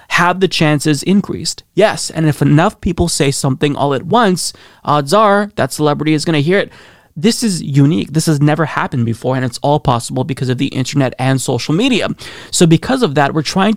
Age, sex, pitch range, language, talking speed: 20-39, male, 140-180 Hz, English, 210 wpm